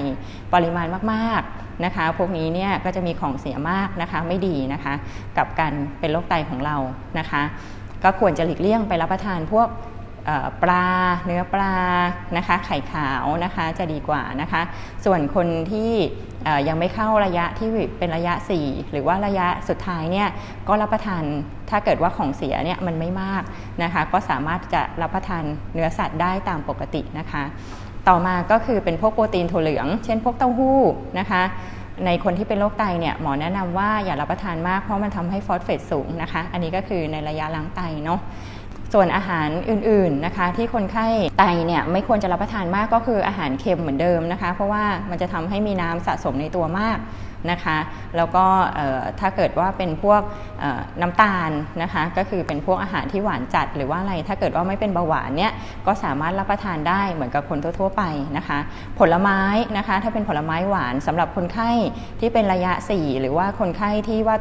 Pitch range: 155-195 Hz